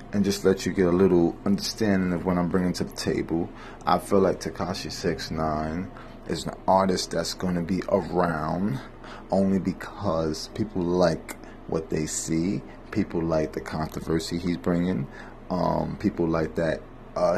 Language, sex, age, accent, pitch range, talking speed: English, male, 30-49, American, 80-95 Hz, 155 wpm